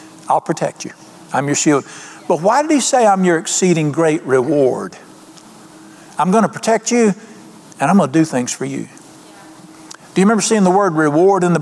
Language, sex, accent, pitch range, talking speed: English, male, American, 160-220 Hz, 195 wpm